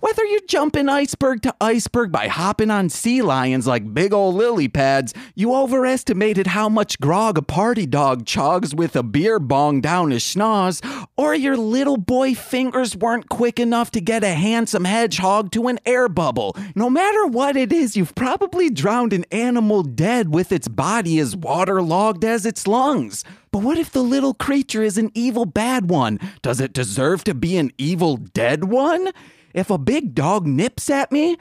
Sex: male